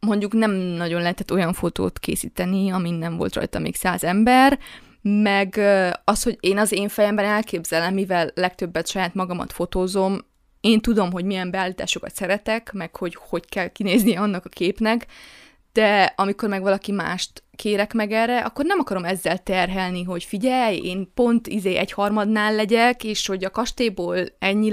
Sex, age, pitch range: female, 20-39, 185-230 Hz